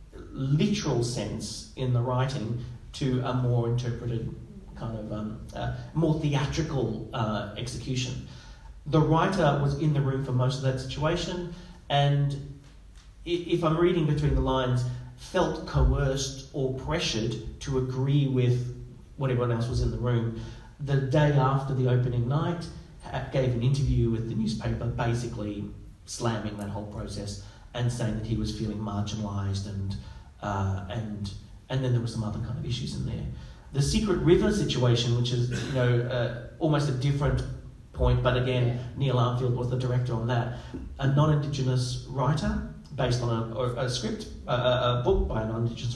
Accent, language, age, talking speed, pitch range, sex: Australian, English, 40-59, 160 wpm, 115-135 Hz, male